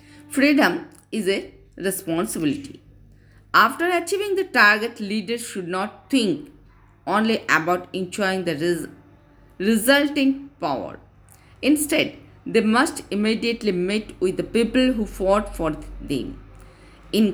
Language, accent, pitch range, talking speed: Hindi, native, 175-255 Hz, 110 wpm